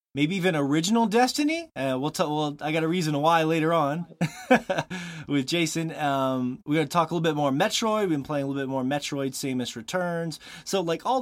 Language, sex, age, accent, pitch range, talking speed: English, male, 20-39, American, 115-160 Hz, 215 wpm